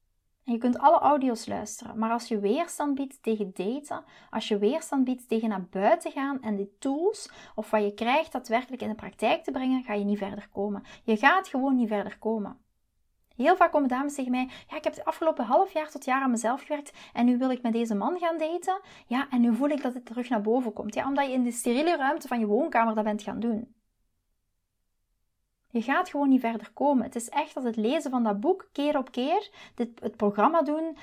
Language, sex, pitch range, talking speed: Dutch, female, 215-290 Hz, 230 wpm